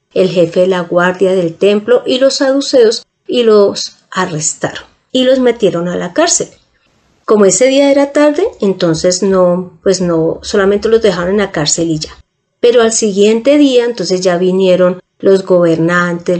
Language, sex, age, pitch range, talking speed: Spanish, female, 30-49, 175-220 Hz, 165 wpm